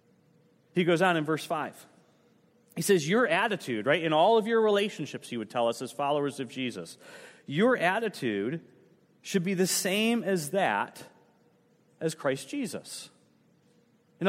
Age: 30-49